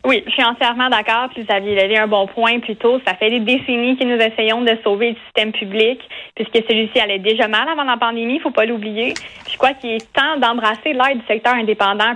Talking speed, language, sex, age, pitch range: 240 wpm, French, female, 20-39, 215-250 Hz